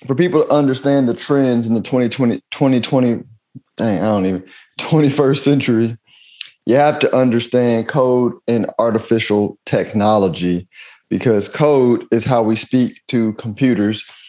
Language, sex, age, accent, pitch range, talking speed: English, male, 30-49, American, 95-120 Hz, 135 wpm